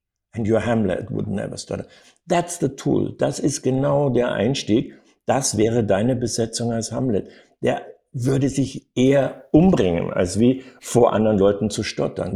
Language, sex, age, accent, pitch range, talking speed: German, male, 60-79, German, 110-135 Hz, 155 wpm